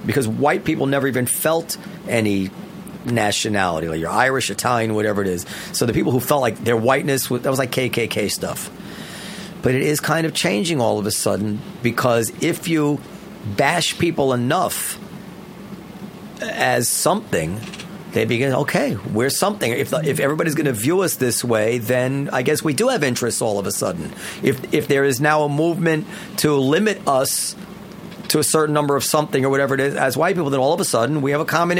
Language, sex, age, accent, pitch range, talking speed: English, male, 40-59, American, 135-185 Hz, 195 wpm